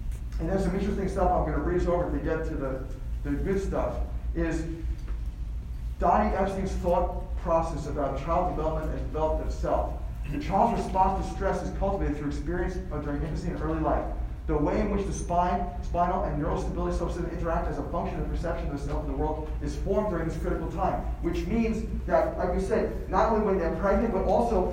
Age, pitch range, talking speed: 40-59, 150-195 Hz, 210 wpm